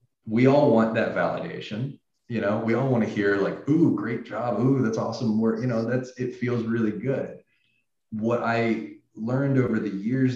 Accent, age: American, 30-49